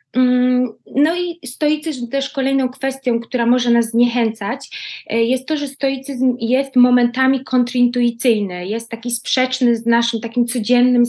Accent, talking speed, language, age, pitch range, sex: native, 130 wpm, Polish, 20-39, 220-255 Hz, female